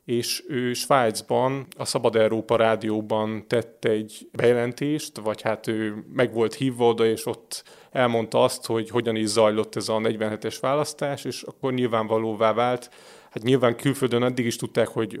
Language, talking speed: Hungarian, 160 wpm